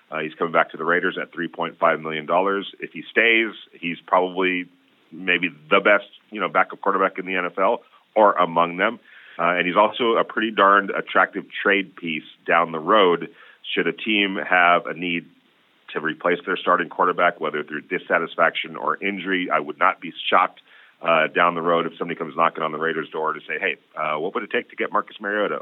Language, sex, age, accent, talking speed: English, male, 40-59, American, 200 wpm